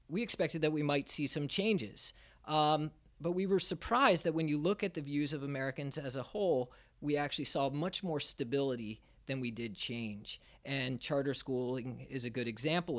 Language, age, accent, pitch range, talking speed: English, 30-49, American, 125-150 Hz, 195 wpm